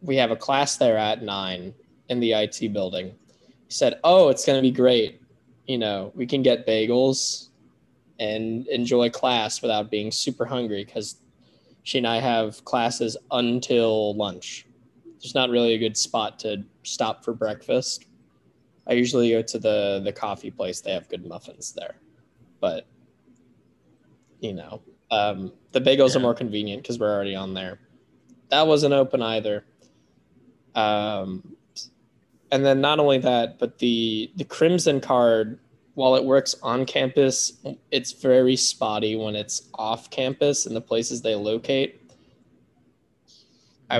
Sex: male